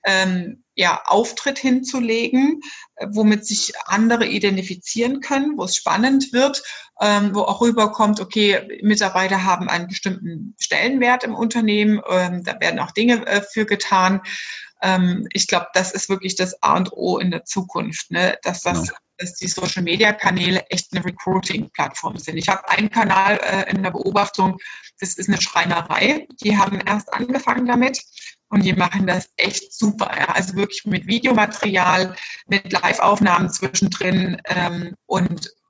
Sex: female